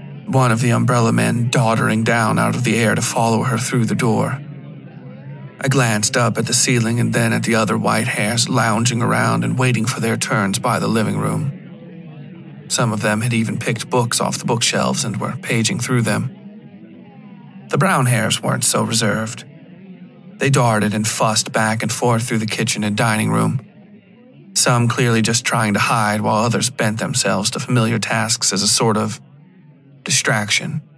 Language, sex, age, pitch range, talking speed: English, male, 40-59, 110-140 Hz, 180 wpm